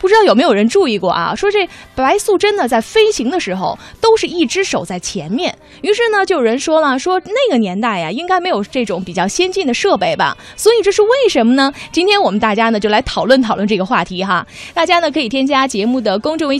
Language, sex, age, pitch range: Chinese, female, 20-39, 225-375 Hz